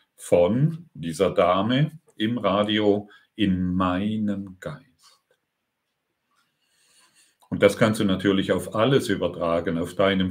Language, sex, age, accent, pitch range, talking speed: German, male, 50-69, German, 95-115 Hz, 105 wpm